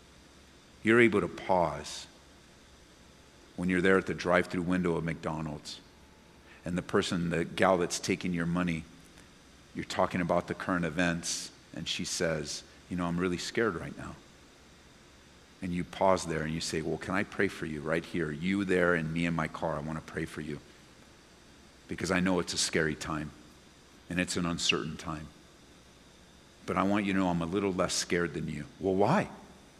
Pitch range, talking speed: 75-90 Hz, 185 wpm